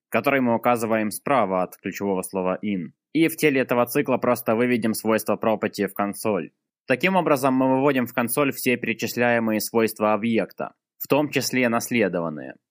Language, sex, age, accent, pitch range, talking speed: Russian, male, 20-39, native, 105-125 Hz, 155 wpm